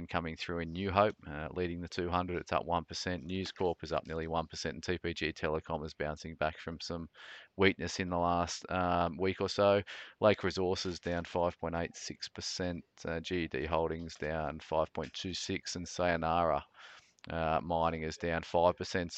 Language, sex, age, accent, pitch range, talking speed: English, male, 30-49, Australian, 80-90 Hz, 155 wpm